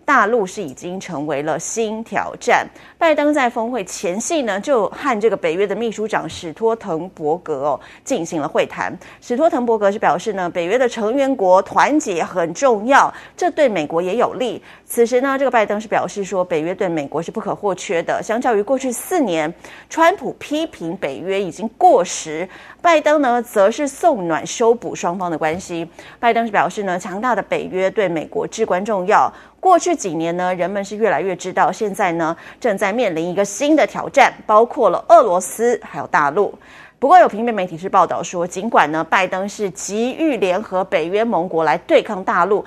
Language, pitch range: Chinese, 180-250 Hz